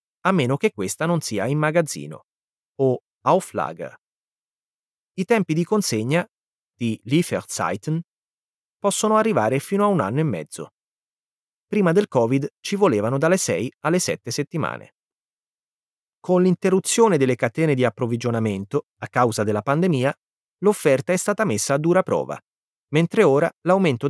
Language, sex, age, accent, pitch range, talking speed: Italian, male, 30-49, native, 120-185 Hz, 135 wpm